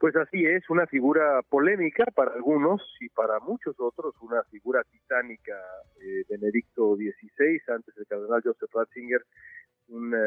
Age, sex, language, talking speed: 40-59, male, Spanish, 145 wpm